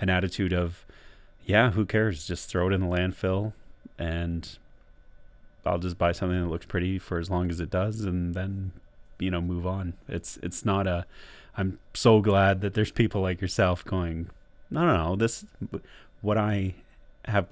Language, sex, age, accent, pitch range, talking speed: English, male, 30-49, American, 85-100 Hz, 180 wpm